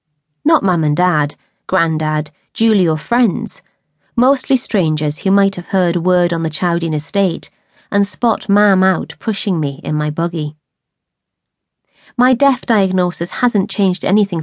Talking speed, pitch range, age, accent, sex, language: 140 wpm, 160-215 Hz, 30-49, British, female, English